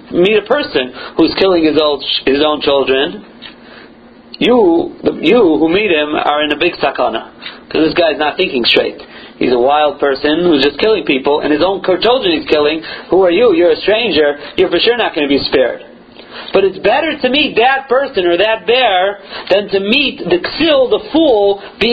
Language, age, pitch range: English, 40-59, 150-220 Hz